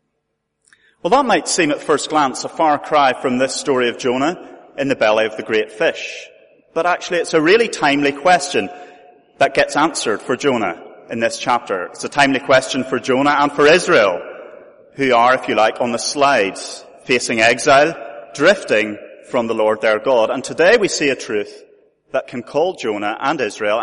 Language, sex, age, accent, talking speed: English, male, 30-49, British, 185 wpm